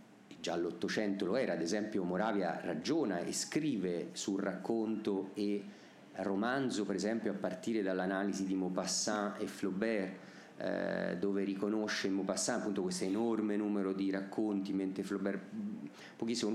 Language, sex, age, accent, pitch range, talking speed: Italian, male, 40-59, native, 100-110 Hz, 135 wpm